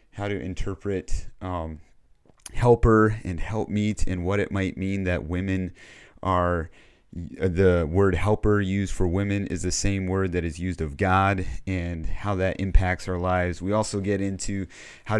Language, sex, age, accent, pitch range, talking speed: English, male, 30-49, American, 90-105 Hz, 160 wpm